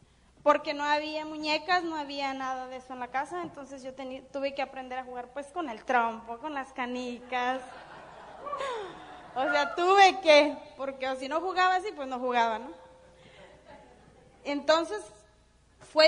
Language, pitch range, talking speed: Spanish, 240-285 Hz, 160 wpm